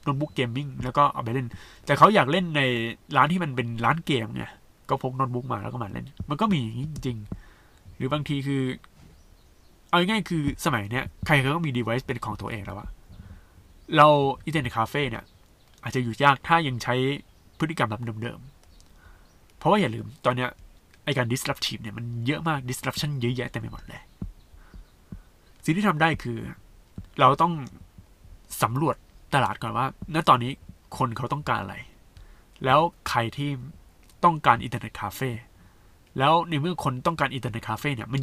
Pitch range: 105-145 Hz